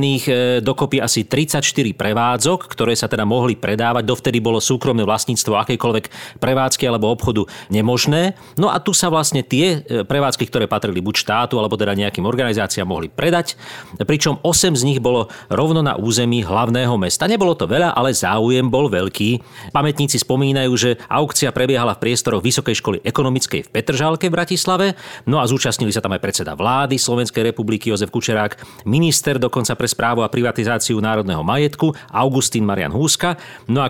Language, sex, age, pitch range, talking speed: Slovak, male, 40-59, 115-145 Hz, 160 wpm